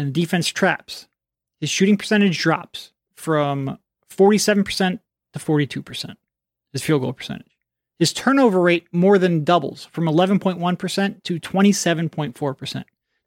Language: English